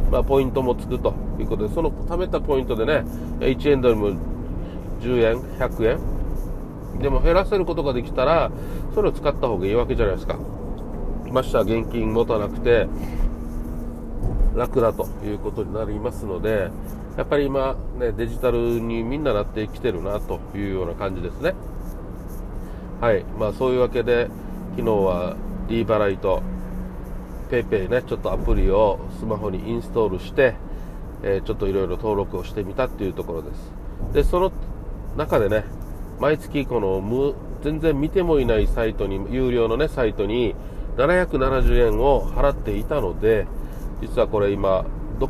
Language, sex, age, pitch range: Japanese, male, 40-59, 95-135 Hz